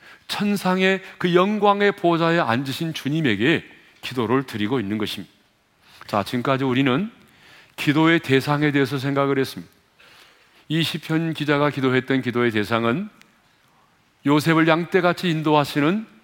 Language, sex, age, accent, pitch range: Korean, male, 40-59, native, 125-165 Hz